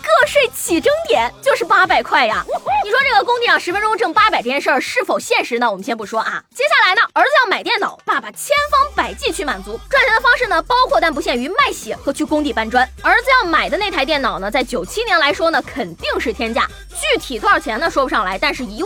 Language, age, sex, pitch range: Chinese, 20-39, female, 295-420 Hz